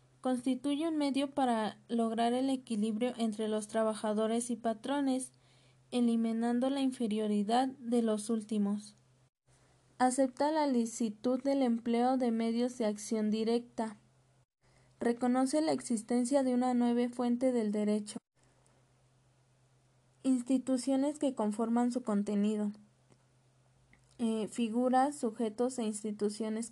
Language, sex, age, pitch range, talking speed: Spanish, female, 20-39, 205-245 Hz, 105 wpm